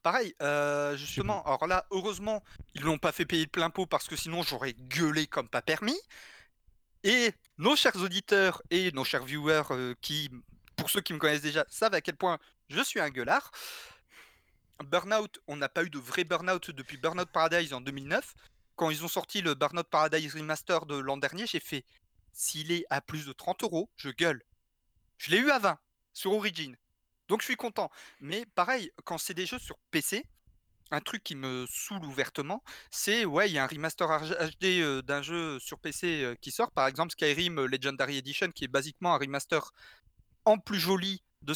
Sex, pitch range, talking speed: male, 140-180 Hz, 200 wpm